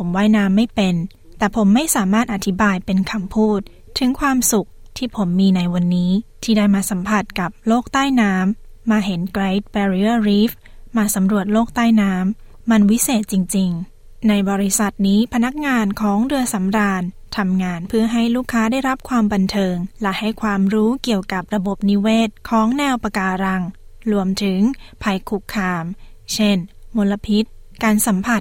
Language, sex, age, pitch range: Thai, female, 20-39, 190-225 Hz